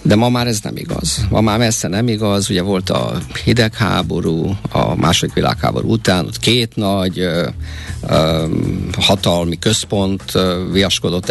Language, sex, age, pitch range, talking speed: Hungarian, male, 50-69, 90-120 Hz, 145 wpm